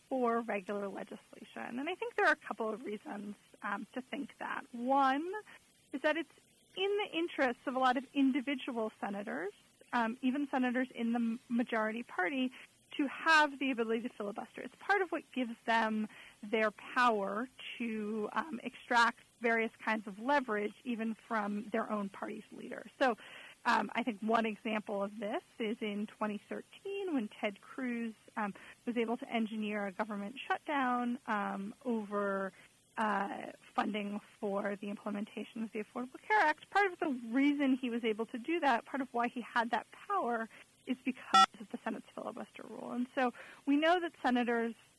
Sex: female